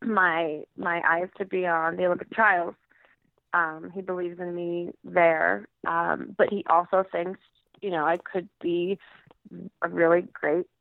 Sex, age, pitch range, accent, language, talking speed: female, 20-39, 175-200 Hz, American, English, 155 wpm